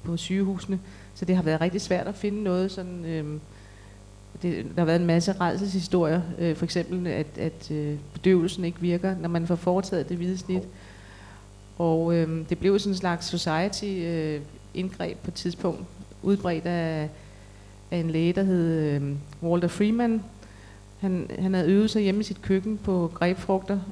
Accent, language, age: native, Danish, 30-49